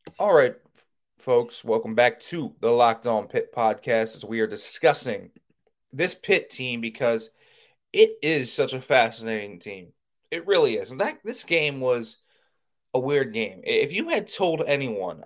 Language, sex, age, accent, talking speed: English, male, 20-39, American, 160 wpm